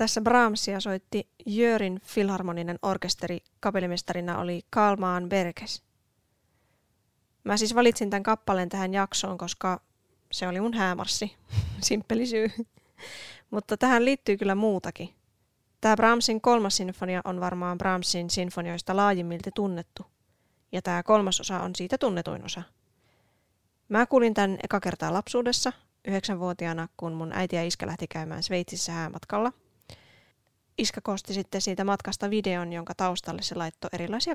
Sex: female